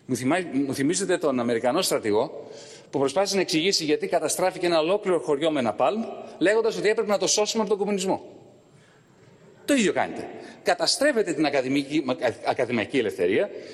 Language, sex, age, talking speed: Greek, male, 40-59, 160 wpm